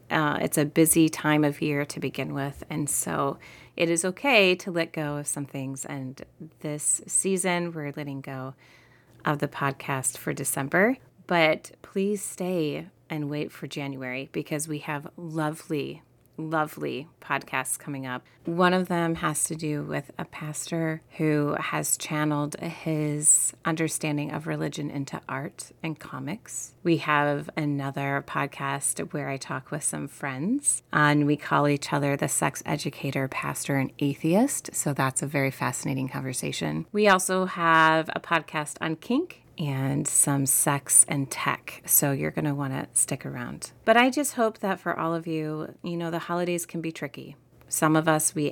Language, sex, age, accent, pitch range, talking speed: English, female, 30-49, American, 140-170 Hz, 165 wpm